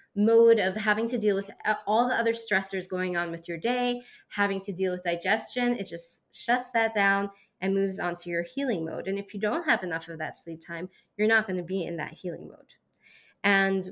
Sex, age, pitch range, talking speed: female, 20-39, 185-225 Hz, 225 wpm